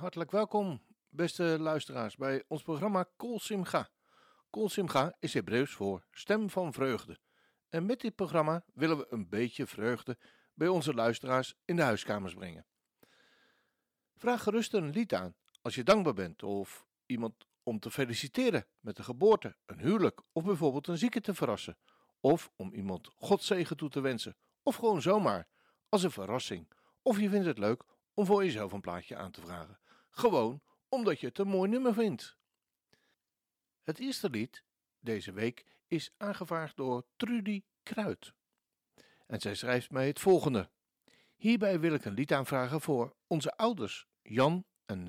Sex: male